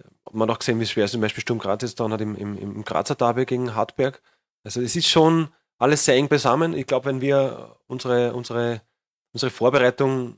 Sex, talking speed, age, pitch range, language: male, 220 wpm, 30-49, 110-130 Hz, German